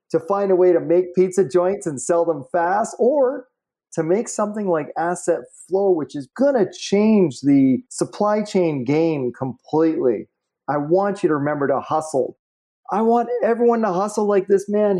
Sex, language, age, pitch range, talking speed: male, English, 30-49, 150-195 Hz, 175 wpm